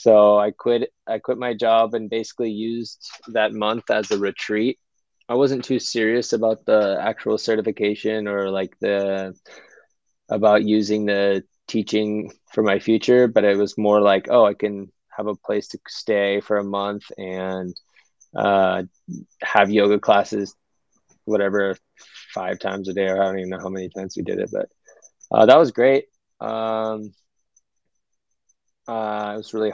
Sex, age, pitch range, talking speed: male, 20-39, 100-110 Hz, 160 wpm